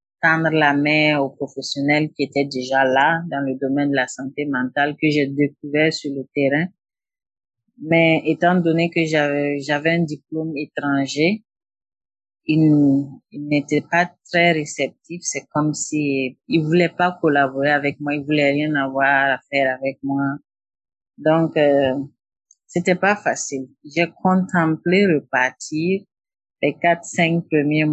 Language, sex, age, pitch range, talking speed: French, female, 40-59, 140-165 Hz, 140 wpm